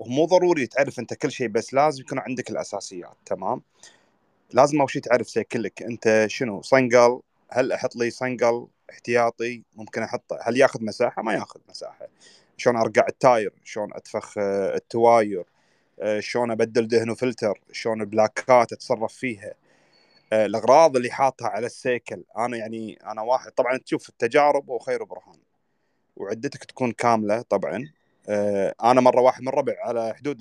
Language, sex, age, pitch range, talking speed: Arabic, male, 30-49, 115-155 Hz, 145 wpm